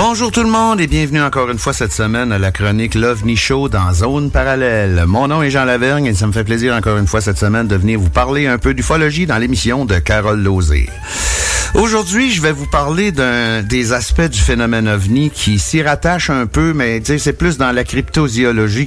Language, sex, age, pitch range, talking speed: French, male, 60-79, 100-140 Hz, 215 wpm